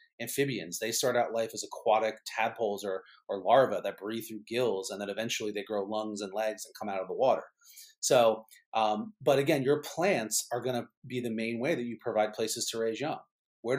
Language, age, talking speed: English, 30-49, 215 wpm